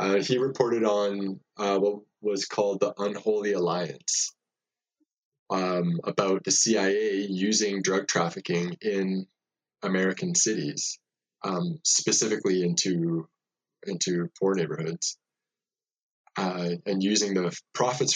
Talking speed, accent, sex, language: 105 wpm, American, male, English